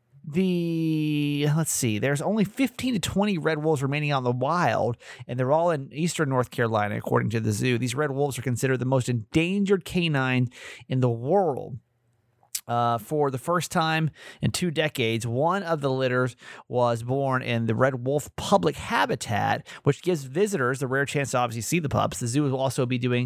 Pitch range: 120-160 Hz